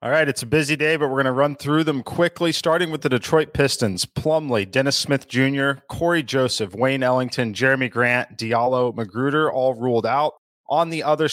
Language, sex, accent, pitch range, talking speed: English, male, American, 120-140 Hz, 195 wpm